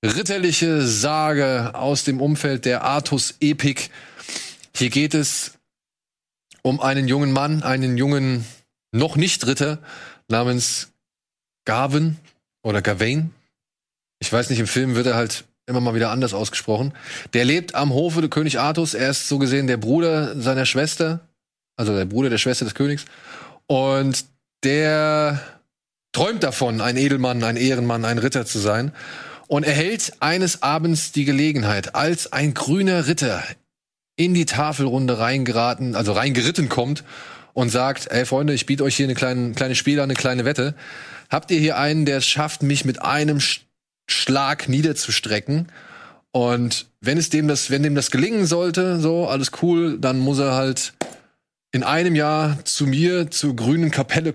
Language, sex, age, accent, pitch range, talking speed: German, male, 20-39, German, 125-150 Hz, 155 wpm